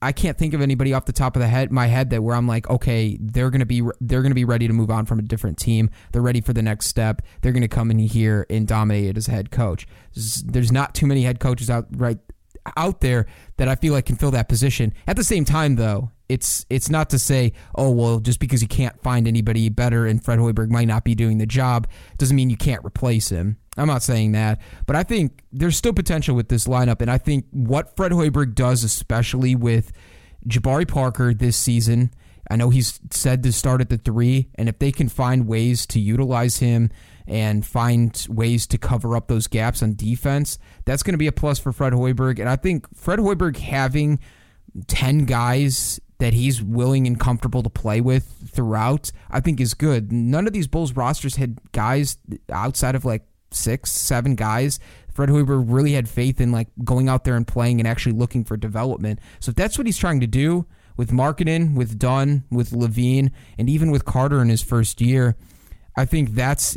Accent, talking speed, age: American, 220 wpm, 30-49